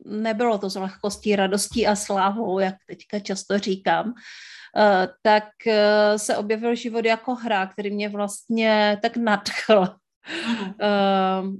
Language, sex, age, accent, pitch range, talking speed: Czech, female, 40-59, native, 205-255 Hz, 130 wpm